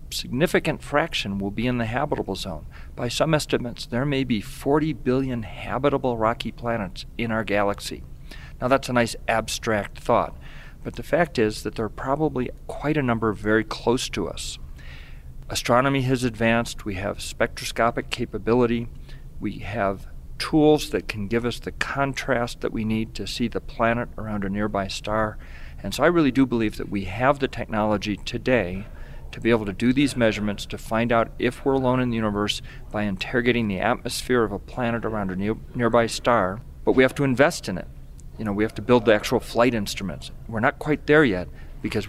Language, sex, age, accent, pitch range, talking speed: English, male, 40-59, American, 100-125 Hz, 190 wpm